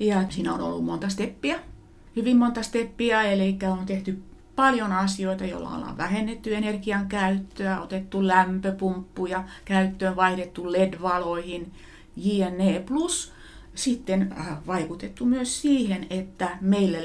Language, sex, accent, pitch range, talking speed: Finnish, female, native, 180-210 Hz, 110 wpm